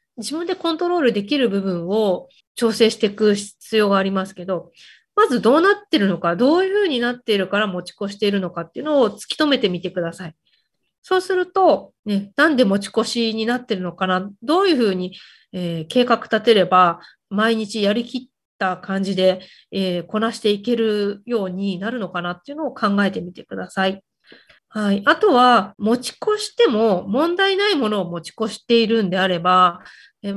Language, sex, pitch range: Japanese, female, 190-280 Hz